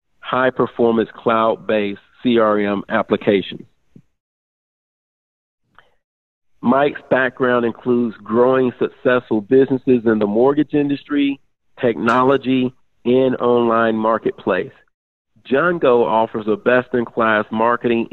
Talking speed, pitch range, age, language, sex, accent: 75 wpm, 105-120 Hz, 40-59, English, male, American